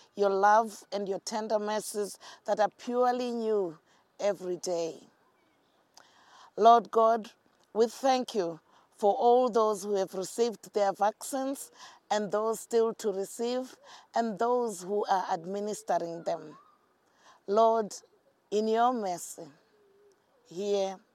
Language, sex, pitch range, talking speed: English, female, 195-230 Hz, 115 wpm